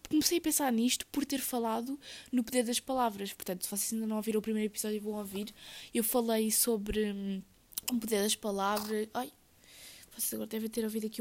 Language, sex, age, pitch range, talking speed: Portuguese, female, 20-39, 215-255 Hz, 205 wpm